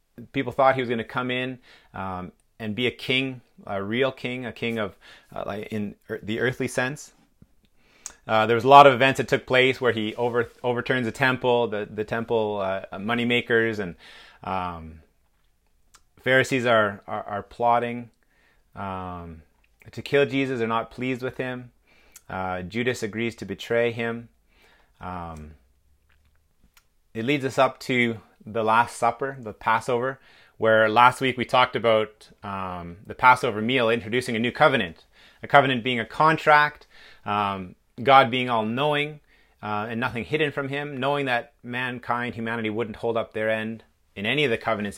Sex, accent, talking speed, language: male, American, 165 wpm, English